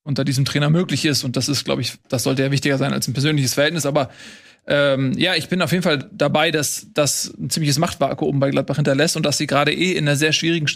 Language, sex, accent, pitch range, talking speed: German, male, German, 145-165 Hz, 255 wpm